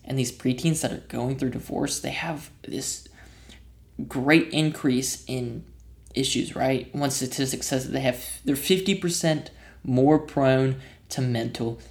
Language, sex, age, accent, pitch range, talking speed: English, male, 20-39, American, 125-165 Hz, 140 wpm